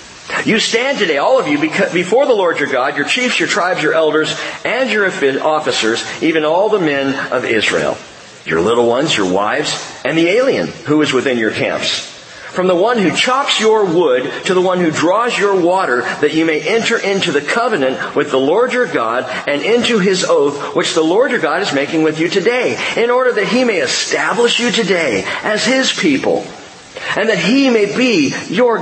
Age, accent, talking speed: 50-69, American, 200 wpm